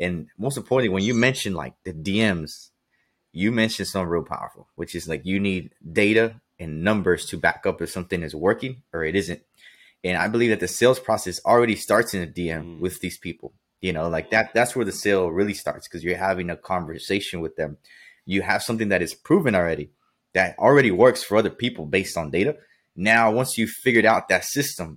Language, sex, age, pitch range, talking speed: English, male, 20-39, 90-110 Hz, 210 wpm